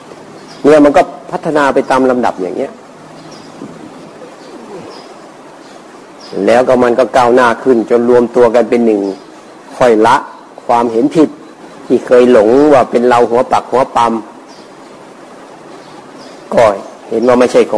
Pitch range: 110-125 Hz